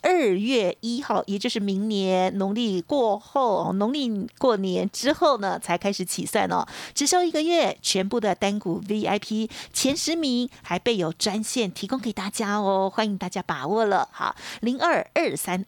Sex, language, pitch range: female, Chinese, 195-250 Hz